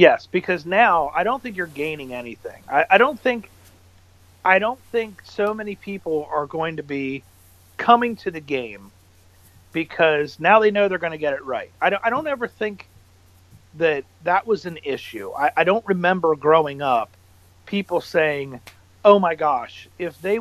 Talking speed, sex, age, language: 180 wpm, male, 50-69, English